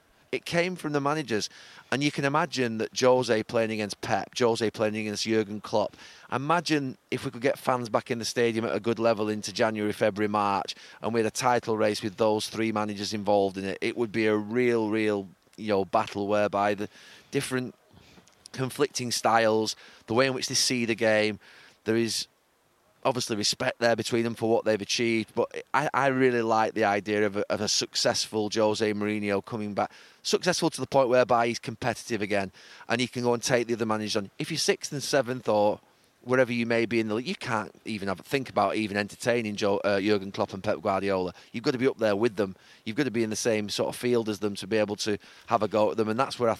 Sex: male